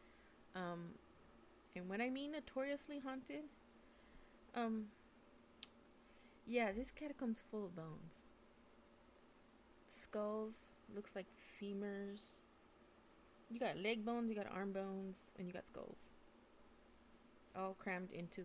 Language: English